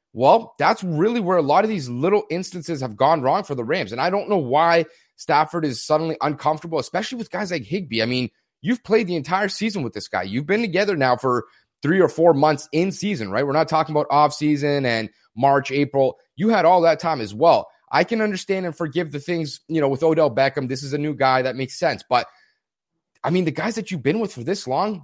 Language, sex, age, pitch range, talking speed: English, male, 30-49, 145-190 Hz, 240 wpm